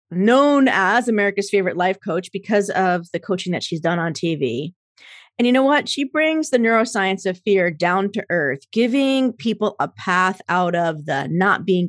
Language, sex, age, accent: English, female, 40-59, American